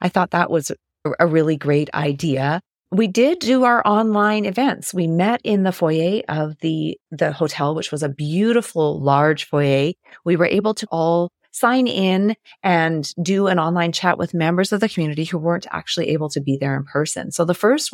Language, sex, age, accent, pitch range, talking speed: English, female, 30-49, American, 145-180 Hz, 195 wpm